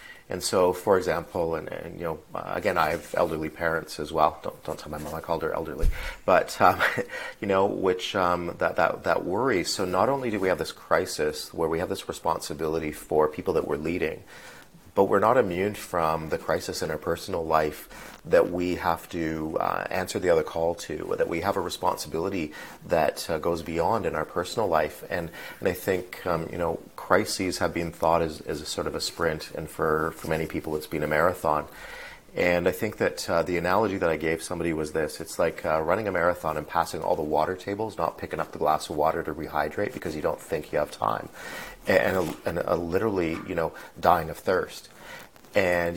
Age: 30-49